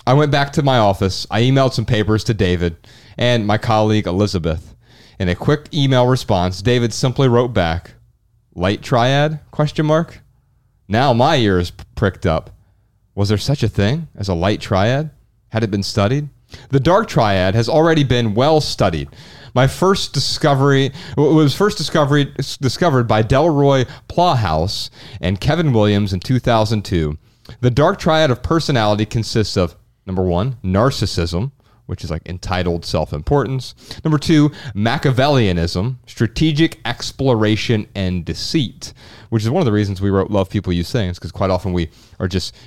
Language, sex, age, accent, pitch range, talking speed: English, male, 30-49, American, 95-130 Hz, 155 wpm